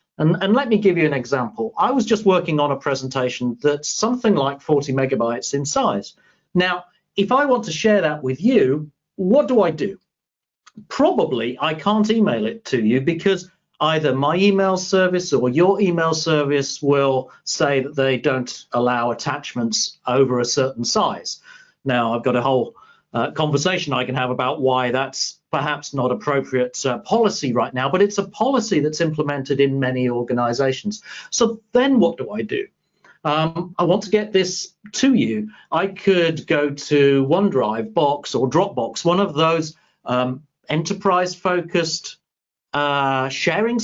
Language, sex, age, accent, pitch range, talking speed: English, male, 40-59, British, 140-205 Hz, 165 wpm